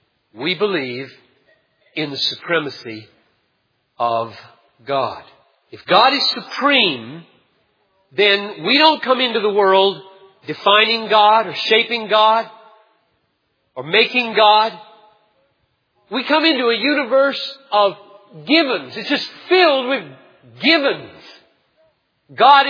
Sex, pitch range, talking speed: male, 205-280 Hz, 105 wpm